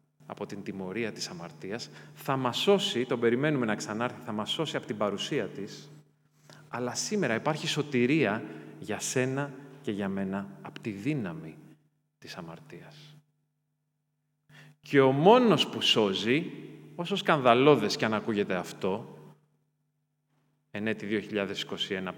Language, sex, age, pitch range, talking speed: Greek, male, 30-49, 115-150 Hz, 125 wpm